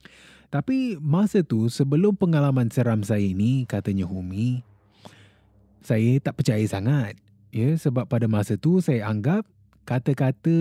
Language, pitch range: Malay, 105-150 Hz